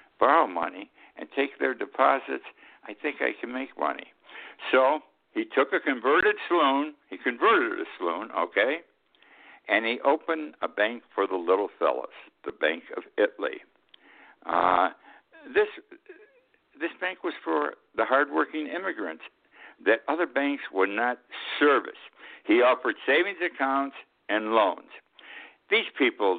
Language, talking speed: English, 135 wpm